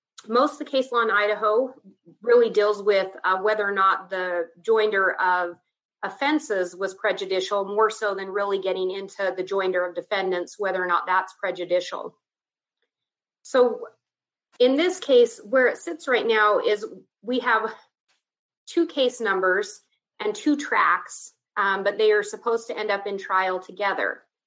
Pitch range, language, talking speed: 200-305 Hz, English, 155 wpm